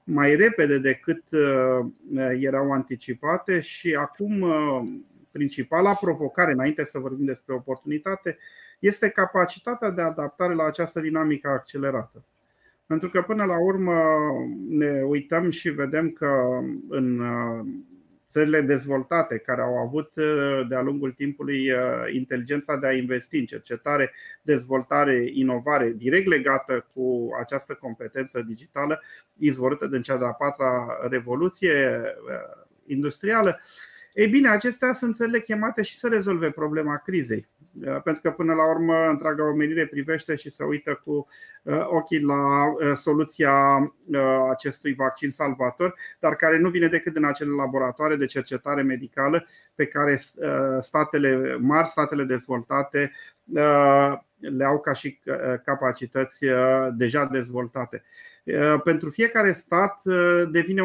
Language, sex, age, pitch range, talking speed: Romanian, male, 30-49, 135-165 Hz, 115 wpm